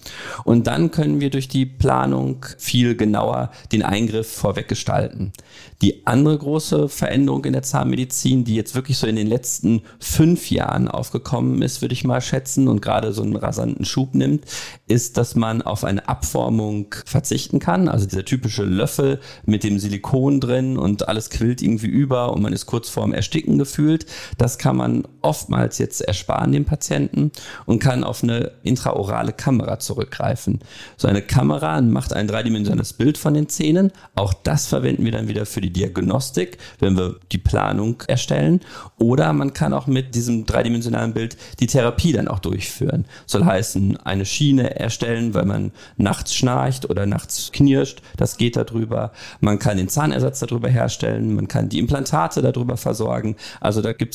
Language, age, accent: German, 40-59, German